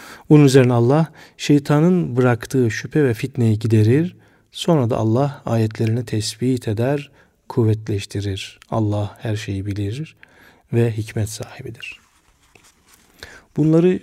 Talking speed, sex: 105 wpm, male